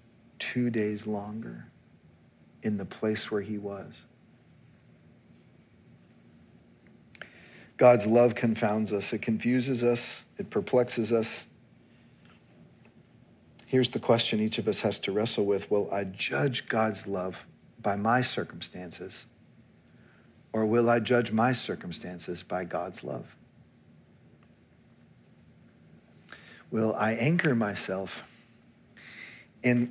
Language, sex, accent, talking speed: English, male, American, 100 wpm